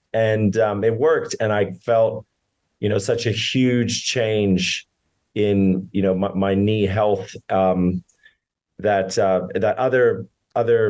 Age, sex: 30-49, male